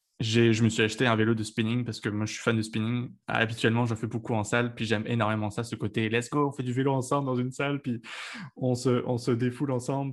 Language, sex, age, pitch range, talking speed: French, male, 20-39, 110-125 Hz, 285 wpm